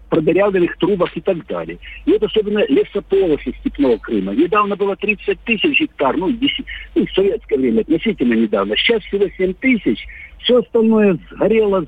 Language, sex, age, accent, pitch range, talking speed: Russian, male, 50-69, native, 180-260 Hz, 160 wpm